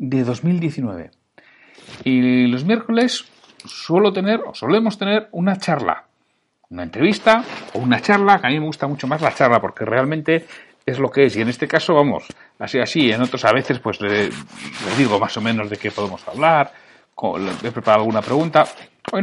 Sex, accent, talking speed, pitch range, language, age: male, Spanish, 190 wpm, 125-165 Hz, Spanish, 60-79